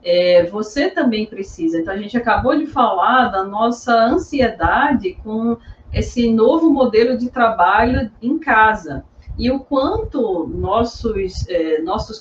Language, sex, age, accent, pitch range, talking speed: Portuguese, female, 40-59, Brazilian, 195-265 Hz, 125 wpm